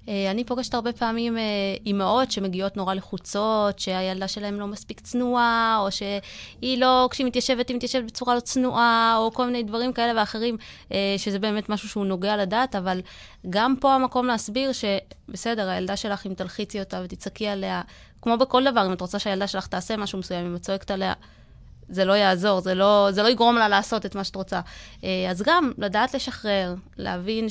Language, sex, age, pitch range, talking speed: Hebrew, female, 20-39, 195-250 Hz, 180 wpm